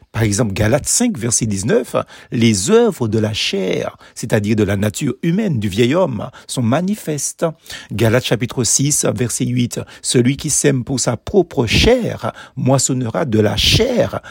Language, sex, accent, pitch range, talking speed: French, male, French, 110-155 Hz, 155 wpm